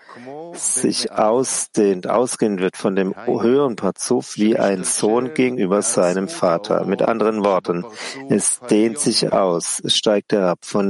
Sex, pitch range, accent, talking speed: male, 100-120 Hz, German, 140 wpm